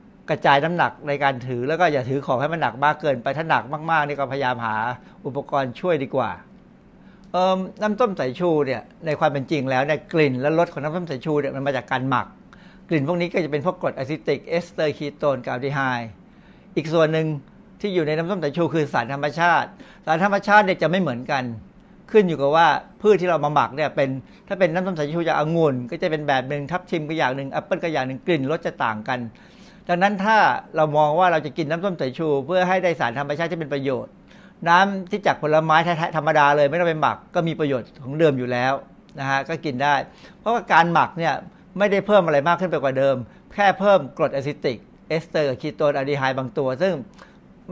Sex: male